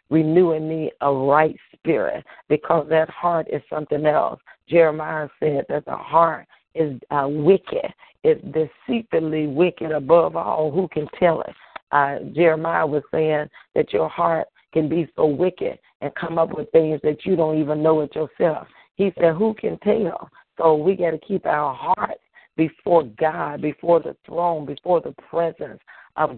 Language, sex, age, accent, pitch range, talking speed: English, female, 50-69, American, 155-180 Hz, 165 wpm